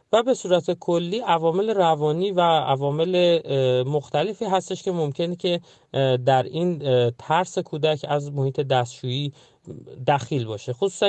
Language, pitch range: Persian, 130-175 Hz